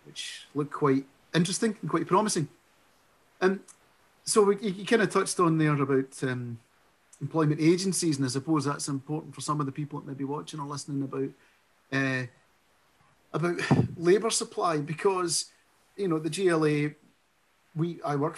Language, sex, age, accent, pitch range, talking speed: English, male, 40-59, British, 135-170 Hz, 155 wpm